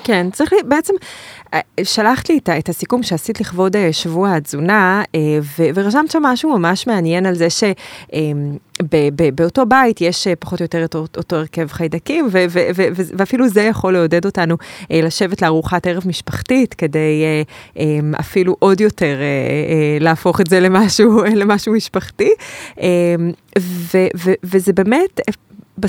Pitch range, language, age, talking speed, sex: 160-210 Hz, English, 20-39, 135 wpm, female